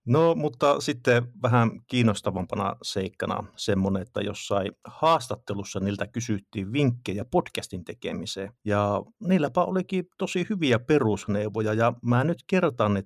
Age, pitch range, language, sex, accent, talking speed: 50-69, 105-135 Hz, Finnish, male, native, 120 wpm